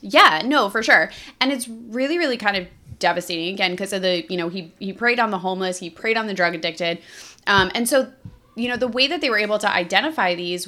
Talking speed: 240 wpm